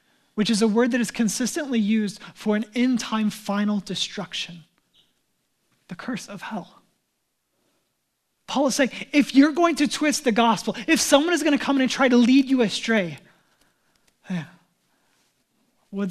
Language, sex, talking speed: English, male, 155 wpm